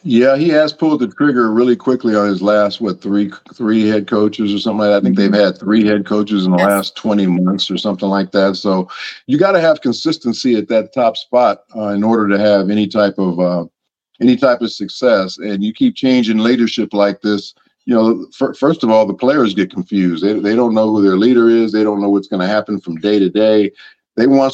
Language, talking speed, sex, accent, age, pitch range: English, 235 wpm, male, American, 50-69, 105-125 Hz